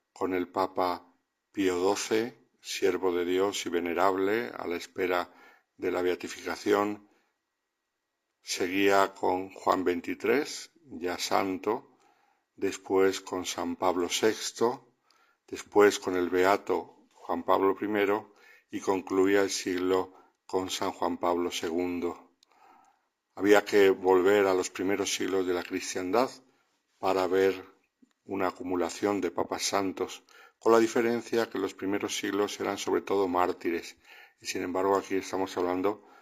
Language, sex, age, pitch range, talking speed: Spanish, male, 60-79, 90-105 Hz, 130 wpm